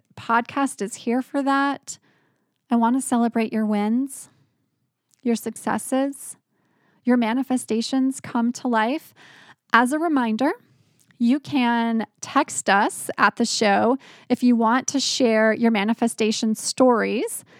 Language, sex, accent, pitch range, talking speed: English, female, American, 220-270 Hz, 125 wpm